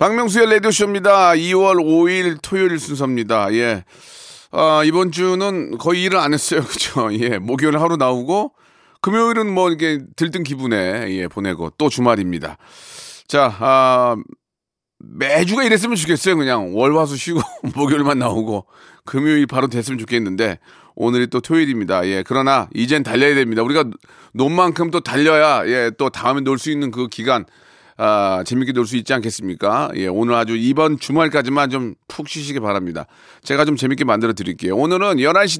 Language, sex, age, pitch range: Korean, male, 40-59, 125-170 Hz